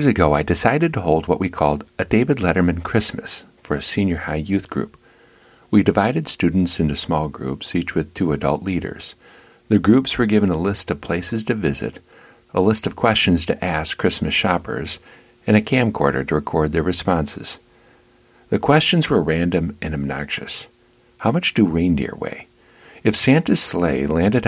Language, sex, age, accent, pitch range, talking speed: English, male, 50-69, American, 80-115 Hz, 170 wpm